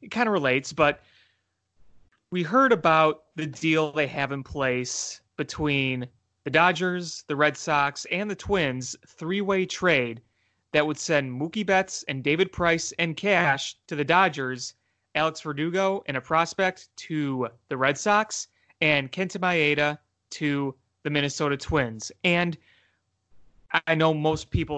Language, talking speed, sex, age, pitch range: English, 145 wpm, male, 30-49, 130-170 Hz